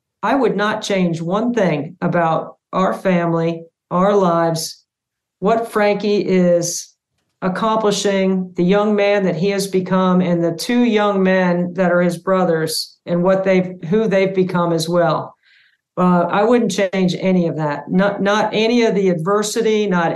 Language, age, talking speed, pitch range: English, 50-69, 160 wpm, 180-205 Hz